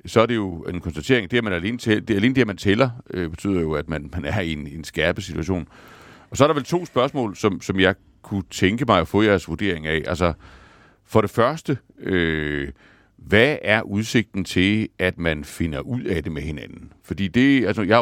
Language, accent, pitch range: Danish, native, 80-105 Hz